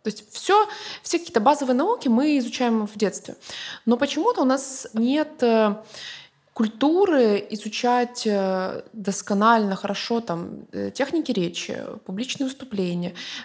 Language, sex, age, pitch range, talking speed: Russian, female, 20-39, 195-250 Hz, 110 wpm